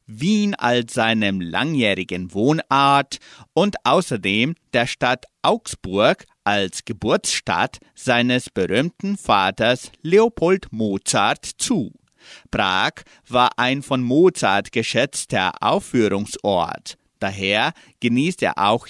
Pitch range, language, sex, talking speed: 115-175 Hz, German, male, 90 wpm